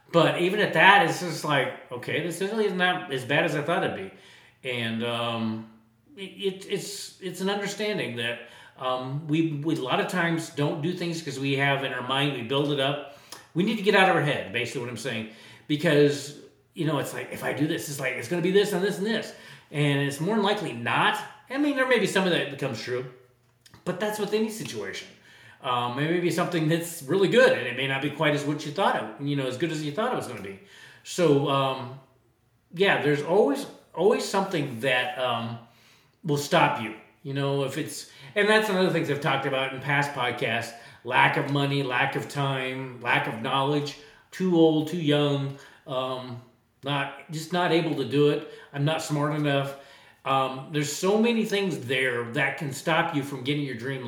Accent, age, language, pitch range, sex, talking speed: American, 40-59, English, 130-170 Hz, male, 215 wpm